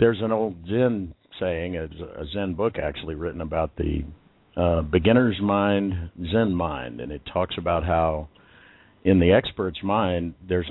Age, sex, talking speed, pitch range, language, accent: 50-69, male, 150 wpm, 85-100 Hz, English, American